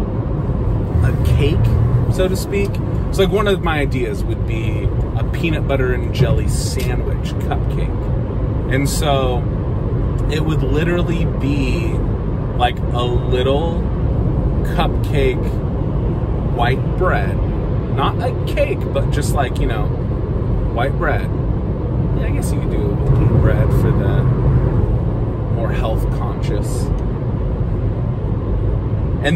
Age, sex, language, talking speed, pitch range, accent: 30-49, male, English, 115 wpm, 110-130 Hz, American